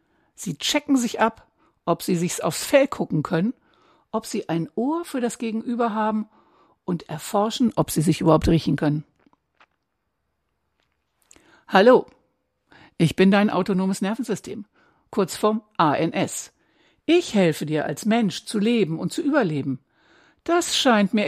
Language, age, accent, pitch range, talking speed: German, 60-79, German, 165-230 Hz, 140 wpm